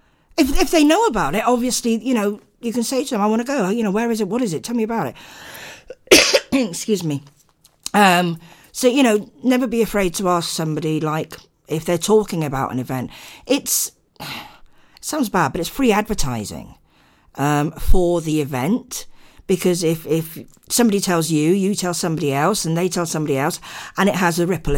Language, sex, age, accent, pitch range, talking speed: English, female, 50-69, British, 150-210 Hz, 195 wpm